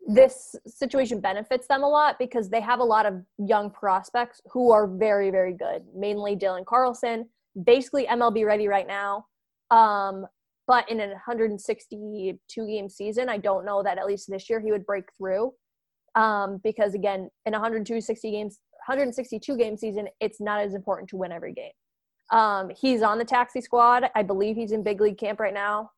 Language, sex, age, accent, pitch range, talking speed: English, female, 20-39, American, 200-240 Hz, 175 wpm